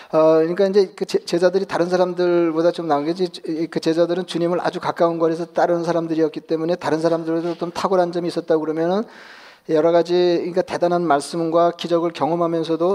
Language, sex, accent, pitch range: Korean, male, native, 160-180 Hz